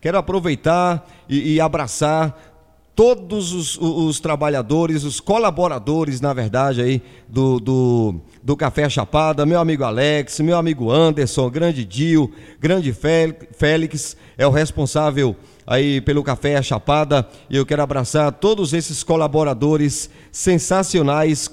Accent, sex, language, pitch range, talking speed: Brazilian, male, Portuguese, 140-175 Hz, 125 wpm